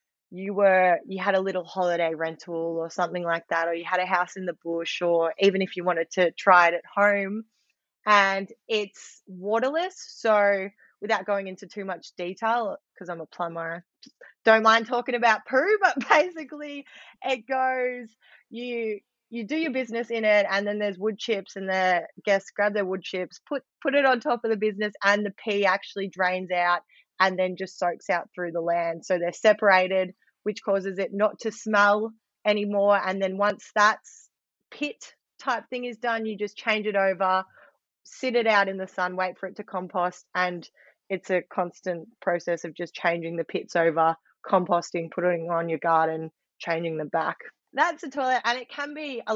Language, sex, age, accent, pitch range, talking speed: English, female, 20-39, Australian, 180-220 Hz, 190 wpm